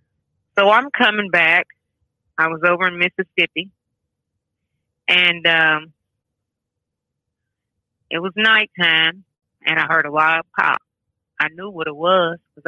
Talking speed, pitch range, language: 125 wpm, 155-180 Hz, English